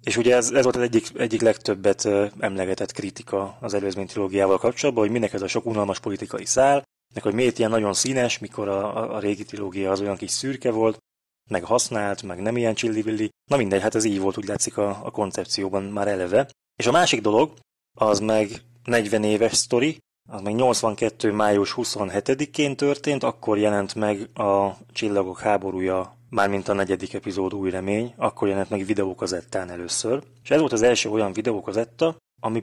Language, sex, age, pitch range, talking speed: Hungarian, male, 20-39, 100-120 Hz, 180 wpm